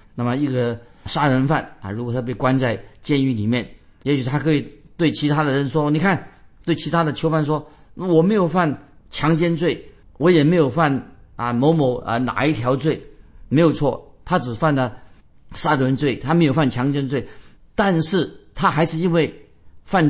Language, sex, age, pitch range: Chinese, male, 50-69, 115-160 Hz